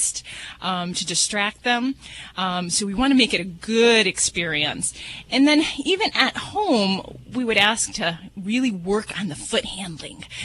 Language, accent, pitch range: English, American, 185-235 Hz